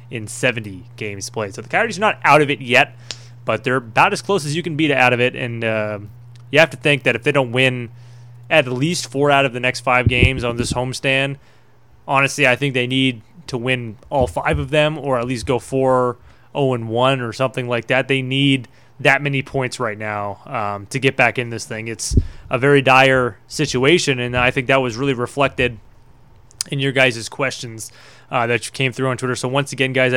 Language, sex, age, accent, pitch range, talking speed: English, male, 20-39, American, 120-140 Hz, 220 wpm